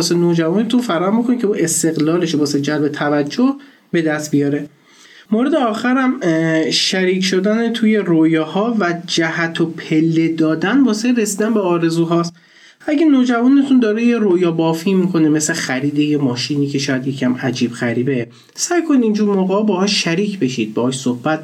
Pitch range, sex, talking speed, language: 130-180 Hz, male, 150 wpm, Persian